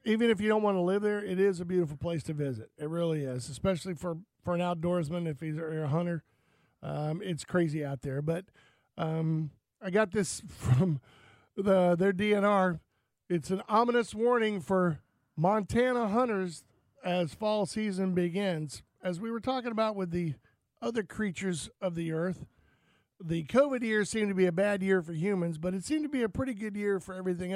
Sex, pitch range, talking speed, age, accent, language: male, 165-200 Hz, 185 wpm, 50-69, American, English